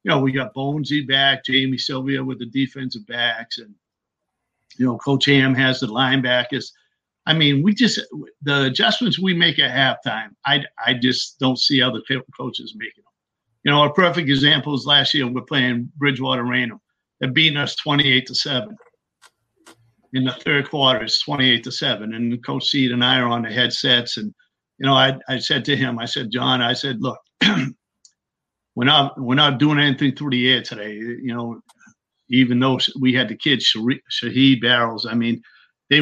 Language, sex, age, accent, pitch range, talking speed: English, male, 50-69, American, 125-145 Hz, 185 wpm